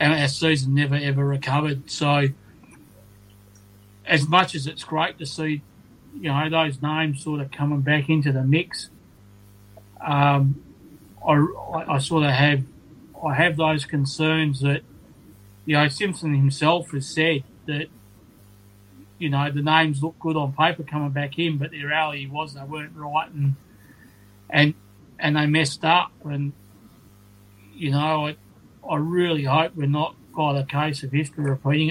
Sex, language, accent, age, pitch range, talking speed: male, English, Australian, 30-49, 135-155 Hz, 155 wpm